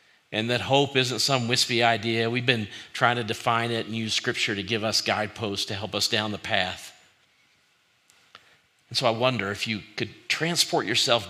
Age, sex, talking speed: 50-69, male, 185 wpm